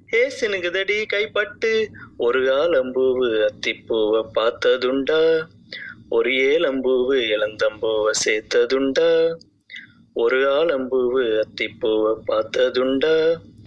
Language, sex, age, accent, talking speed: Tamil, male, 30-49, native, 60 wpm